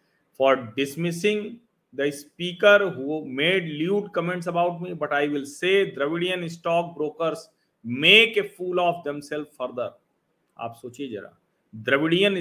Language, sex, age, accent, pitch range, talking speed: Hindi, male, 40-59, native, 145-185 Hz, 125 wpm